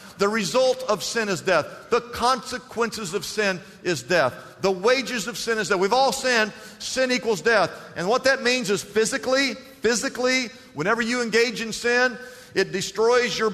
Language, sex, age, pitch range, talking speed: English, male, 50-69, 195-250 Hz, 175 wpm